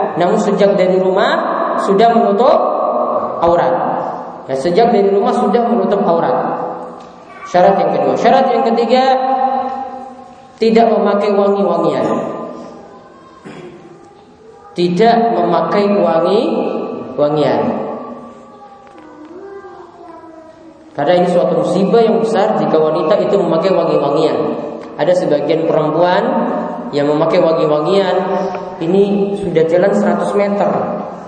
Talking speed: 90 wpm